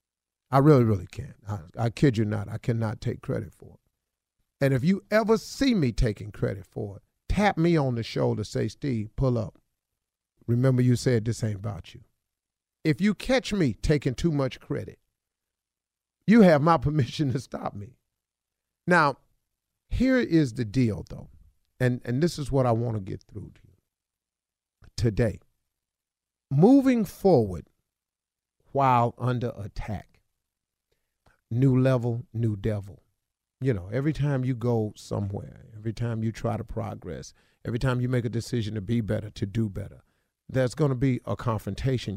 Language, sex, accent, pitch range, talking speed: English, male, American, 100-135 Hz, 165 wpm